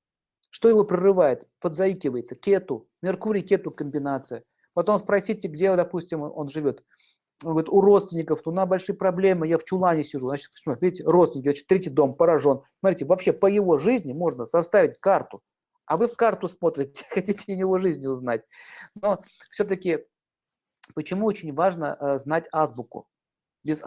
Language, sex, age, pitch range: Russian, male, 50-69, 145-190 Hz